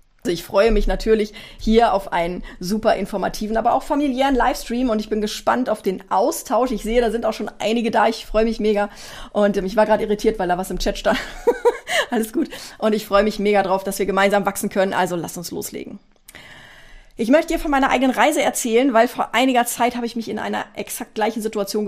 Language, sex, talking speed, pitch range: German, female, 220 wpm, 205-245 Hz